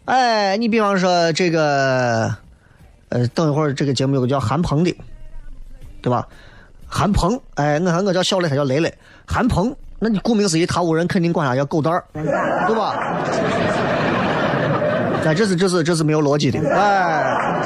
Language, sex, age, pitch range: Chinese, male, 20-39, 135-205 Hz